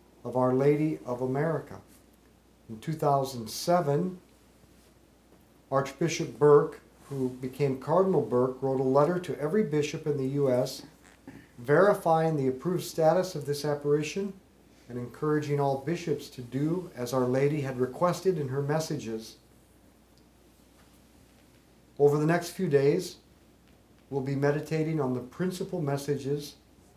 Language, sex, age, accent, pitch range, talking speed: English, male, 50-69, American, 125-160 Hz, 120 wpm